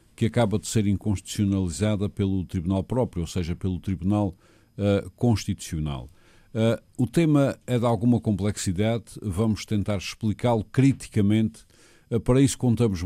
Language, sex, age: Portuguese, male, 50-69